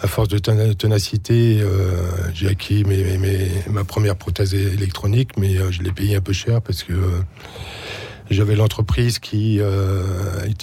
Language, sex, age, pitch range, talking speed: French, male, 50-69, 95-105 Hz, 165 wpm